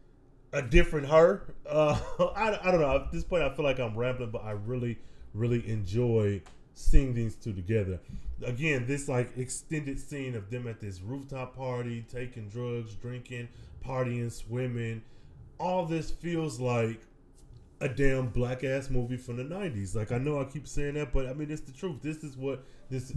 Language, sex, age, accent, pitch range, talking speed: English, male, 20-39, American, 115-150 Hz, 180 wpm